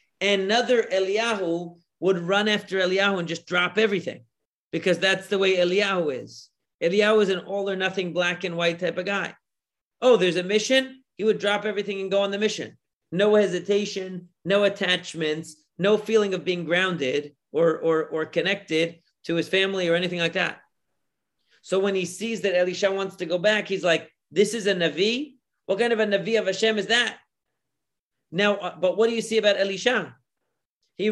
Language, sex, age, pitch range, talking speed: English, male, 40-59, 170-210 Hz, 175 wpm